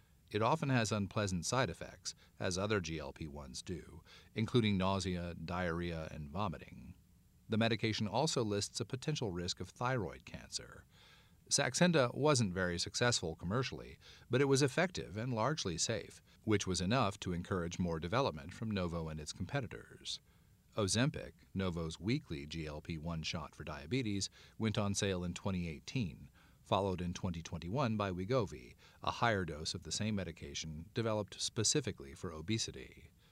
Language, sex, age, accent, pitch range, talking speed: English, male, 40-59, American, 85-115 Hz, 140 wpm